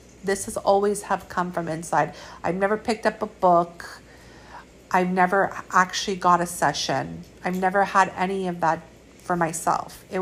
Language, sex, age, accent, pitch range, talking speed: English, female, 50-69, American, 175-200 Hz, 165 wpm